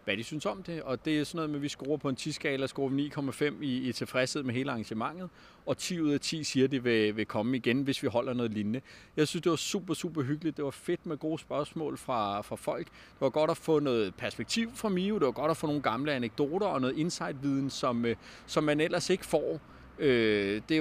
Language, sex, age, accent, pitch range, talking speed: Danish, male, 30-49, native, 125-160 Hz, 250 wpm